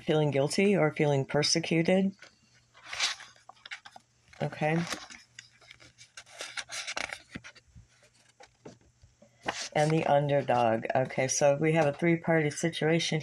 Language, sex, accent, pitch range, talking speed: English, female, American, 140-175 Hz, 75 wpm